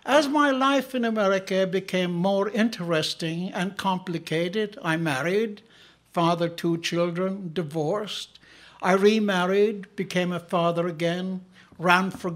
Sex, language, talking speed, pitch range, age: male, English, 115 wpm, 165-205 Hz, 60-79